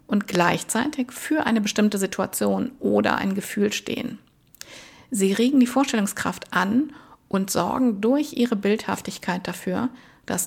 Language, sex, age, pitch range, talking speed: German, female, 50-69, 195-250 Hz, 125 wpm